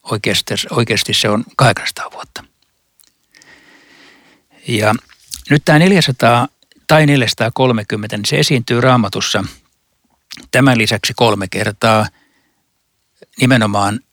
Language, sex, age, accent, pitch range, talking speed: Finnish, male, 60-79, native, 105-135 Hz, 90 wpm